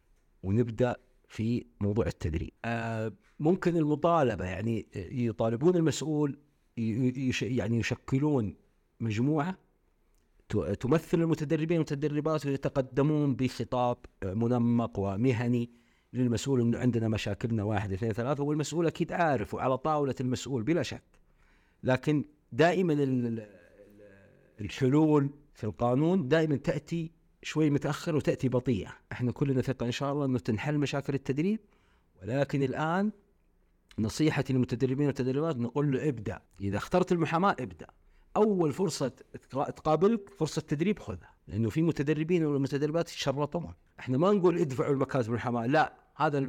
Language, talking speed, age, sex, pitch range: Arabic, 115 wpm, 50-69, male, 115-155 Hz